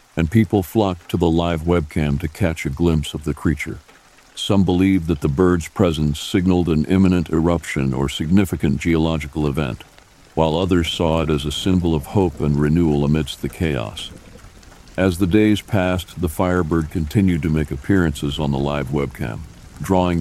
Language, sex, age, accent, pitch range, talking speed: English, male, 60-79, American, 75-90 Hz, 170 wpm